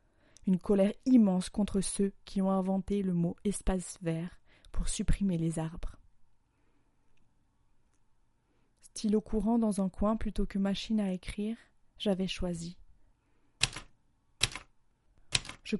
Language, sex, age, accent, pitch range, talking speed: French, female, 30-49, French, 180-215 Hz, 120 wpm